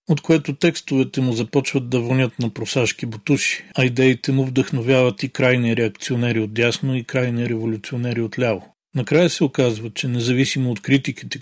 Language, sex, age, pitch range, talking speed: Bulgarian, male, 40-59, 115-135 Hz, 165 wpm